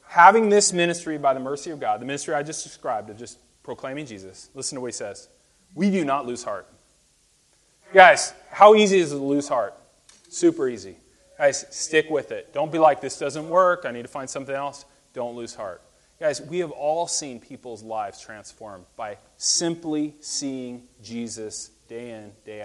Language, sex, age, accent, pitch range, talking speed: English, male, 30-49, American, 140-220 Hz, 190 wpm